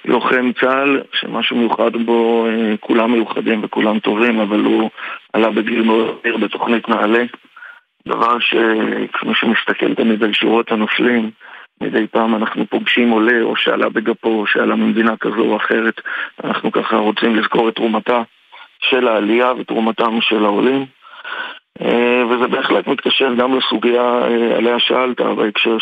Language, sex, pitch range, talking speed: Hebrew, male, 110-125 Hz, 135 wpm